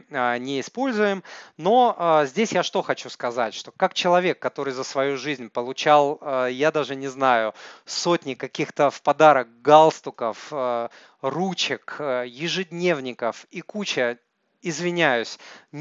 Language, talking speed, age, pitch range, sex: Russian, 130 wpm, 30-49, 135-175 Hz, male